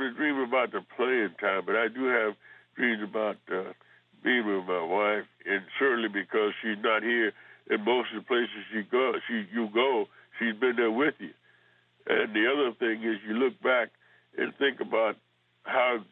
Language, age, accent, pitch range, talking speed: English, 60-79, American, 105-125 Hz, 180 wpm